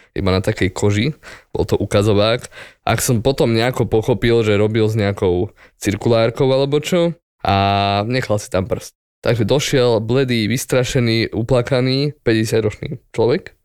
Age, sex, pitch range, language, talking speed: 20-39, male, 105-125 Hz, Slovak, 140 wpm